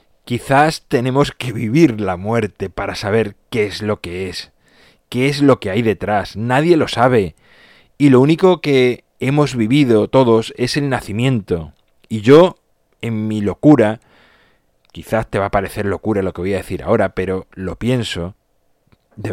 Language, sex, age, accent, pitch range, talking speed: Spanish, male, 30-49, Spanish, 105-135 Hz, 165 wpm